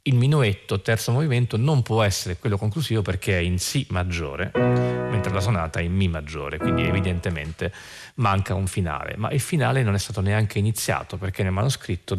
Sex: male